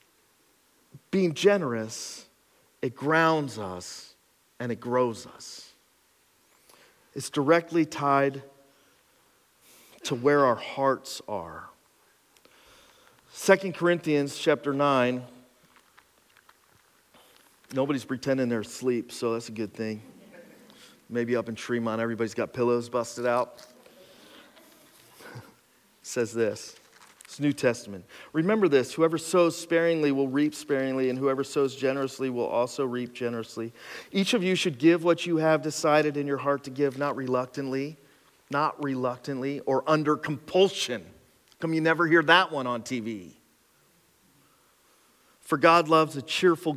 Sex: male